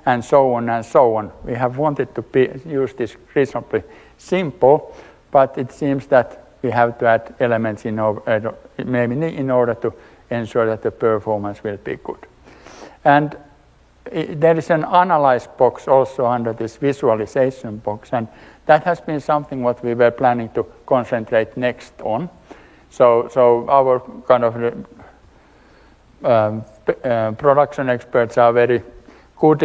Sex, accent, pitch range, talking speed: male, Finnish, 115-140 Hz, 145 wpm